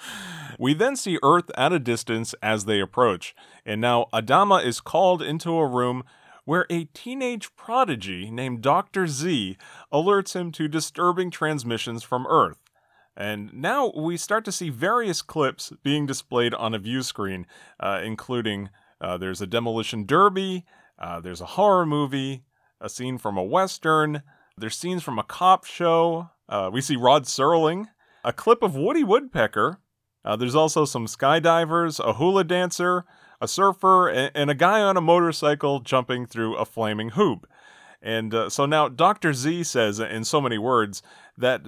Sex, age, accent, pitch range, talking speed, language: male, 30-49, American, 115-175 Hz, 165 wpm, English